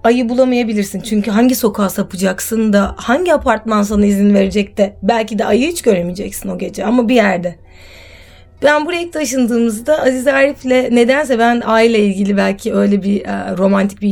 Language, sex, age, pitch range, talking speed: Turkish, female, 30-49, 200-270 Hz, 160 wpm